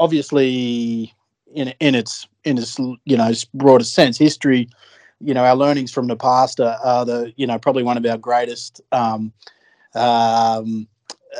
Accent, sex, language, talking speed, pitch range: Australian, male, English, 155 wpm, 115-135 Hz